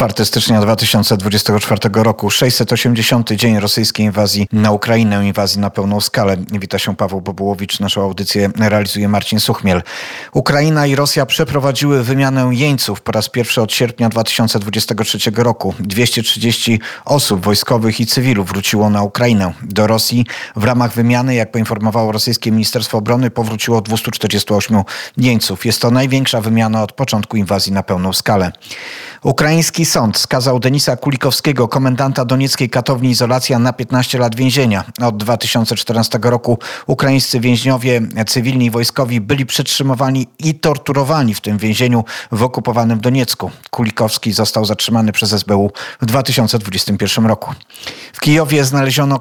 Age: 30-49